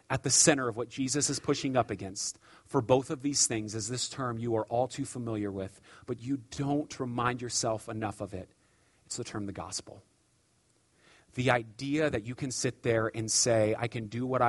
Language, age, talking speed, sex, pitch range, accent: English, 30-49, 205 wpm, male, 115-155 Hz, American